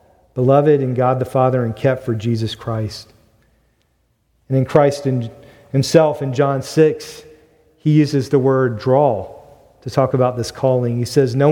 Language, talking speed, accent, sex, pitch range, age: English, 155 wpm, American, male, 125-165 Hz, 40-59